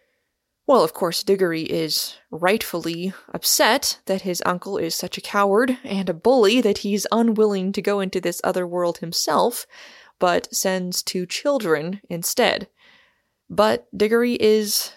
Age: 20-39